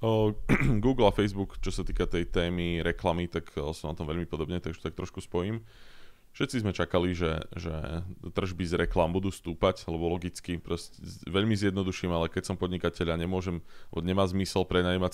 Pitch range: 85-95 Hz